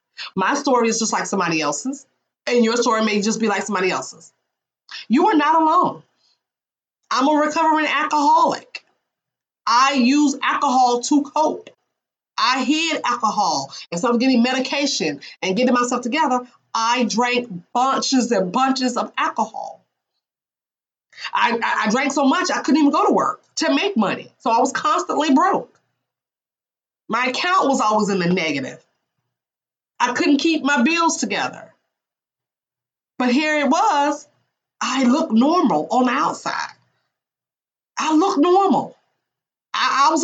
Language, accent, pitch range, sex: English, American, 225-300 Hz, female